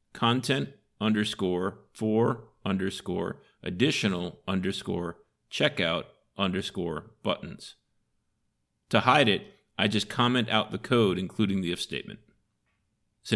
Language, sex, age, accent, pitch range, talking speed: English, male, 40-59, American, 95-115 Hz, 105 wpm